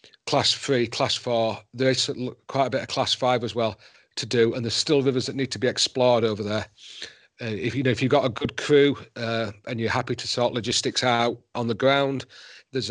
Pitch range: 115-130 Hz